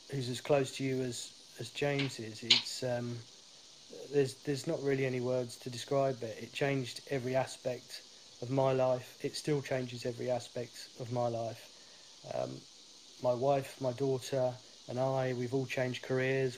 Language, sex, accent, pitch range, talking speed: English, male, British, 120-135 Hz, 170 wpm